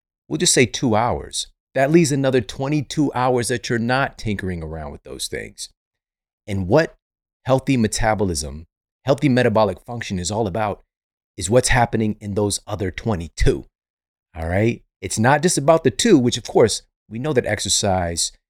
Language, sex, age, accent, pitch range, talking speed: English, male, 30-49, American, 85-115 Hz, 160 wpm